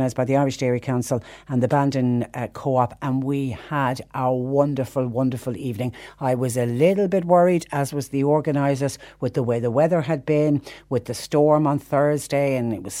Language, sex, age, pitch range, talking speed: English, female, 60-79, 125-150 Hz, 195 wpm